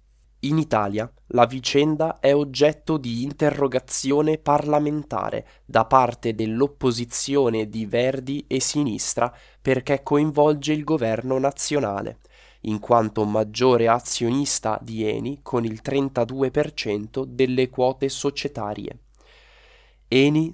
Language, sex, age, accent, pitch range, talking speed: English, male, 20-39, Italian, 110-145 Hz, 100 wpm